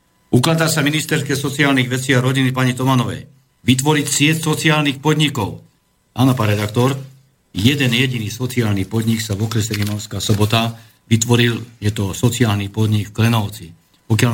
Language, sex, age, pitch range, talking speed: Slovak, male, 50-69, 110-130 Hz, 140 wpm